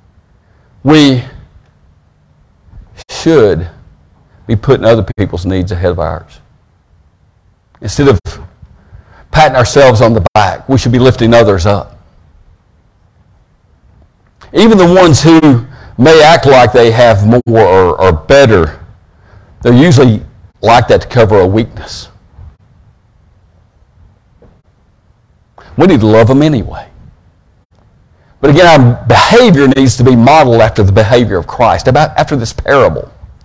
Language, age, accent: English, 50-69, American